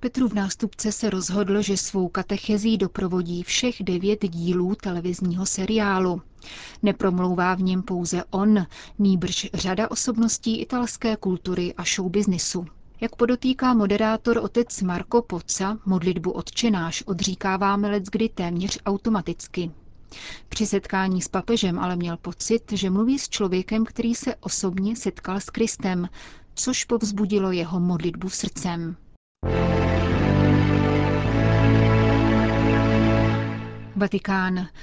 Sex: female